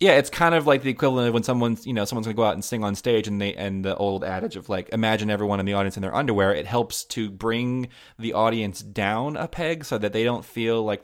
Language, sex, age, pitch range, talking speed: English, male, 30-49, 100-115 Hz, 275 wpm